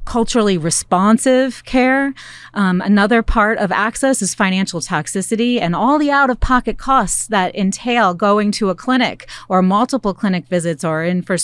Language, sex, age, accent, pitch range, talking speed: English, female, 30-49, American, 175-225 Hz, 150 wpm